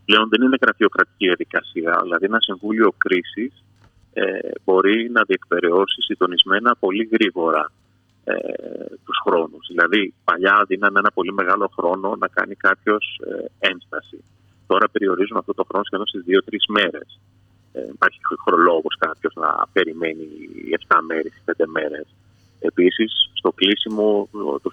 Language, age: Greek, 30-49